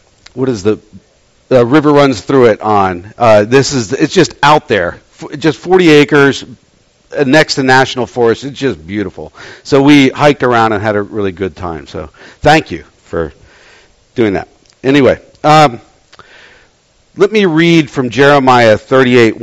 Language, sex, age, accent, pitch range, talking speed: English, male, 50-69, American, 120-150 Hz, 155 wpm